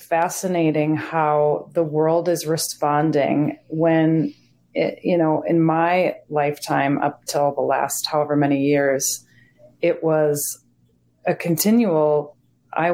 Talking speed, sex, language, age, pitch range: 110 wpm, female, English, 30-49, 140-160 Hz